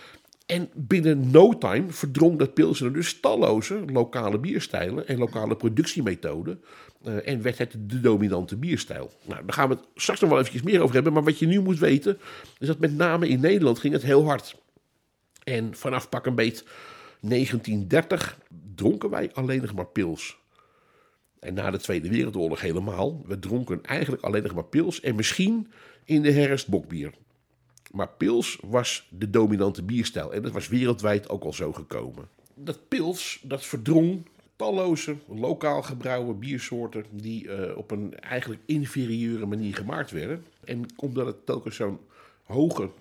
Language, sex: Dutch, male